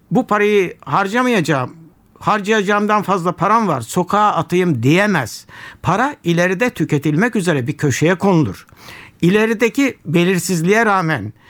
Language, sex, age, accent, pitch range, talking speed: Turkish, male, 60-79, native, 145-195 Hz, 105 wpm